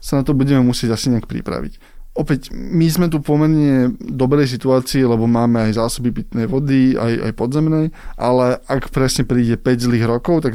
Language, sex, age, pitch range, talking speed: Slovak, male, 20-39, 125-145 Hz, 180 wpm